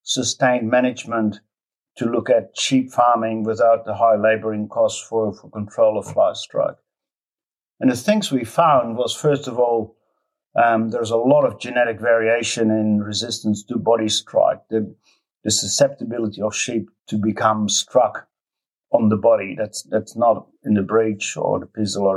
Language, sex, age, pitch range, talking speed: English, male, 50-69, 105-120 Hz, 160 wpm